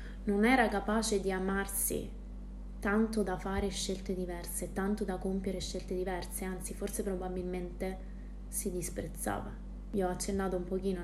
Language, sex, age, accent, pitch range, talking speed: Italian, female, 20-39, native, 190-225 Hz, 135 wpm